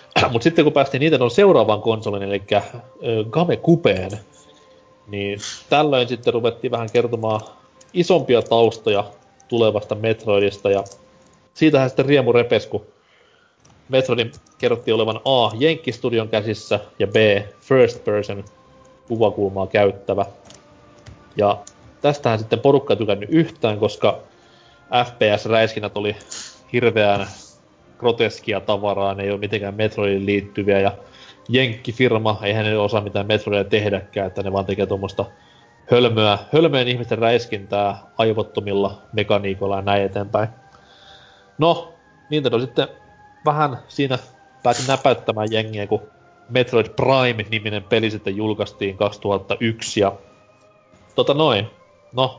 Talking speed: 110 wpm